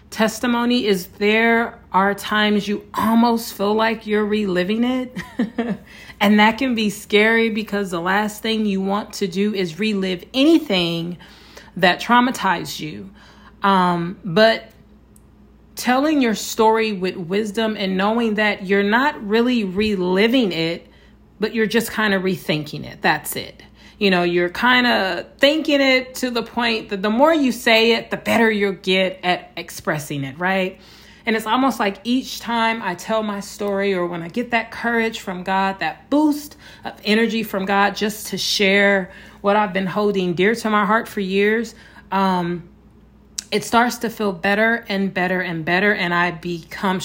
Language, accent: English, American